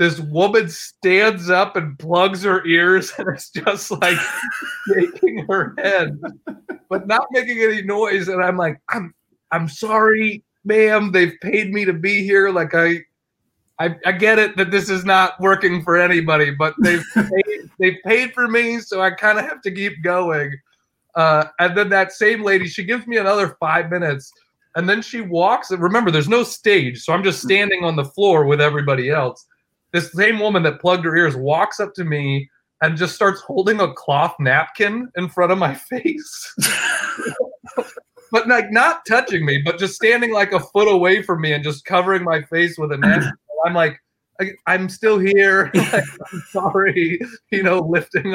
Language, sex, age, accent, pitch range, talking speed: English, male, 30-49, American, 170-210 Hz, 185 wpm